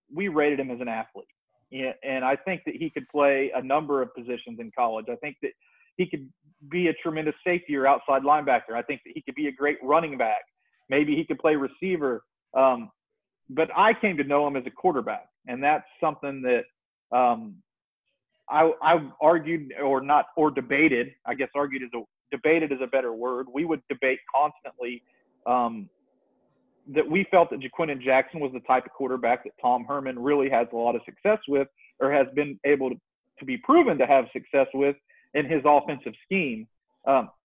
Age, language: 40-59, English